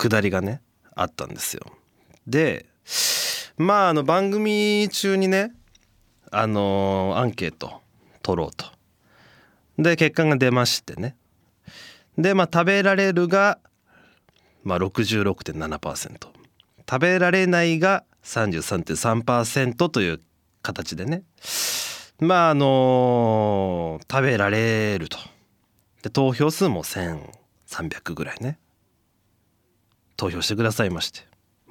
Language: Japanese